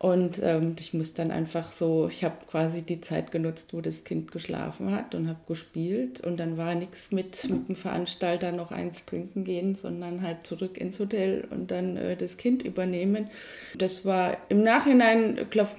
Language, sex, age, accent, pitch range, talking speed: German, female, 20-39, German, 165-190 Hz, 185 wpm